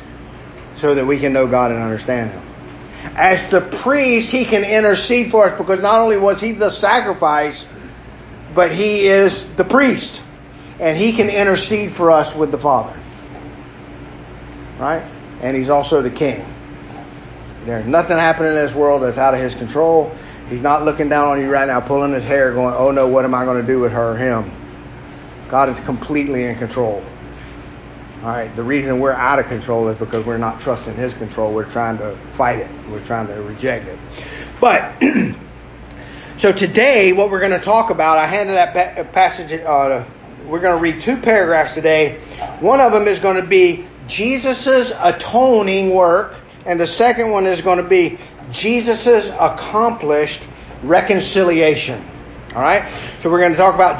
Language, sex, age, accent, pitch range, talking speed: English, male, 50-69, American, 125-195 Hz, 175 wpm